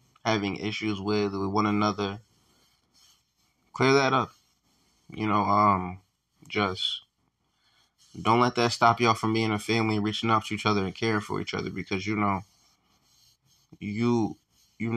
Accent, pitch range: American, 100-110 Hz